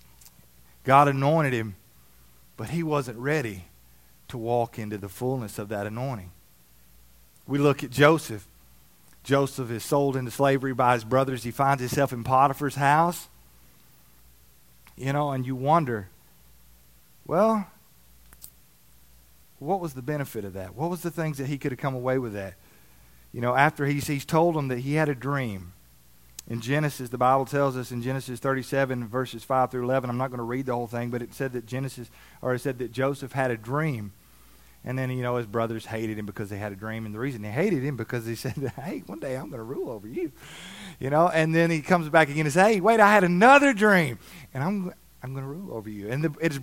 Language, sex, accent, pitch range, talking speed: English, male, American, 105-145 Hz, 210 wpm